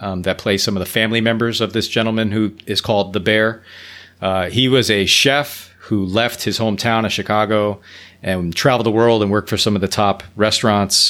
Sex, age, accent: male, 30-49, American